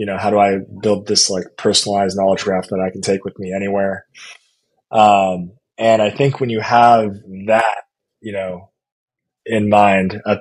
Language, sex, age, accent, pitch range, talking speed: English, male, 20-39, American, 95-110 Hz, 180 wpm